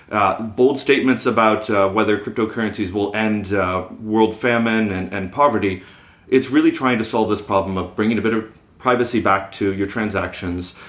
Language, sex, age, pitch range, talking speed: English, male, 30-49, 95-115 Hz, 175 wpm